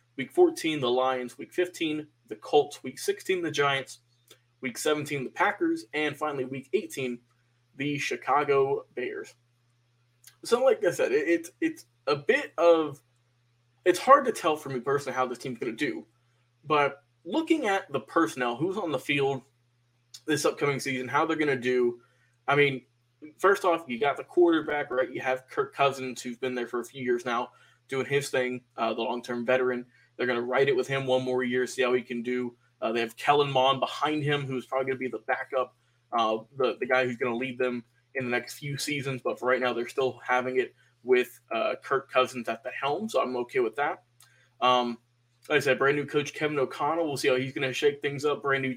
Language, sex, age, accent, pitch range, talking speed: English, male, 20-39, American, 125-150 Hz, 210 wpm